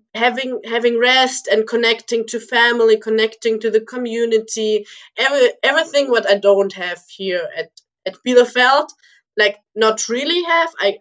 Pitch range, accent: 200-240 Hz, German